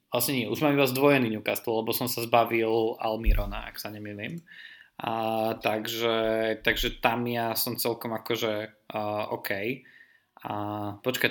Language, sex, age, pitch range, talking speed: Slovak, male, 20-39, 110-135 Hz, 135 wpm